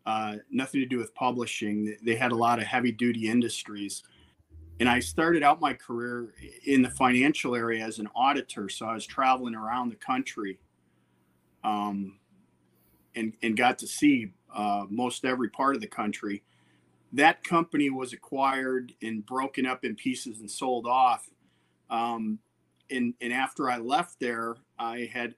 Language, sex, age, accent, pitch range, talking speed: English, male, 40-59, American, 105-135 Hz, 160 wpm